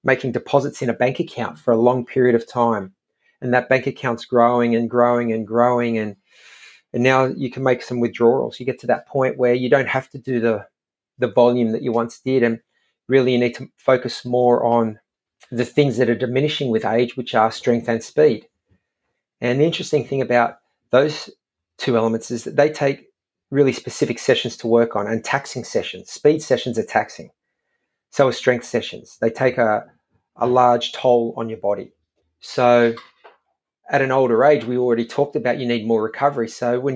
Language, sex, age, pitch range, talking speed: English, male, 40-59, 115-130 Hz, 195 wpm